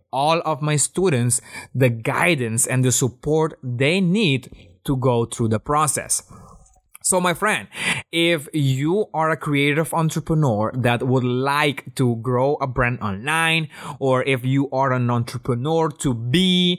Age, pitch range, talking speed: 20-39, 125-160 Hz, 145 wpm